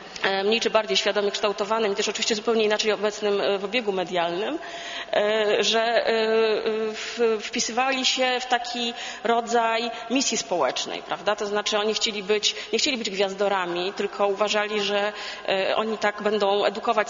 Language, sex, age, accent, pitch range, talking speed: Polish, female, 30-49, native, 205-230 Hz, 135 wpm